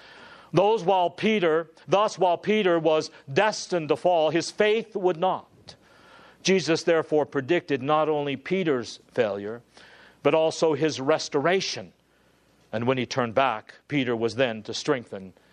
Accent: American